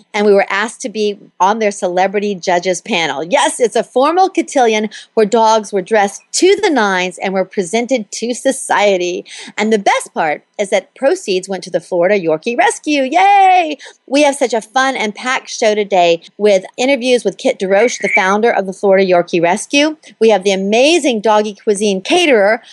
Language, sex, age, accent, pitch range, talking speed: English, female, 40-59, American, 195-270 Hz, 185 wpm